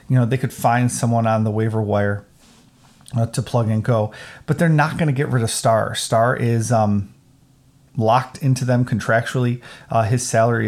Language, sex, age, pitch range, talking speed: English, male, 30-49, 115-130 Hz, 190 wpm